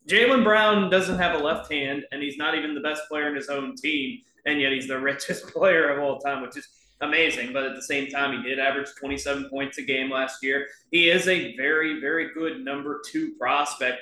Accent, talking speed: American, 225 wpm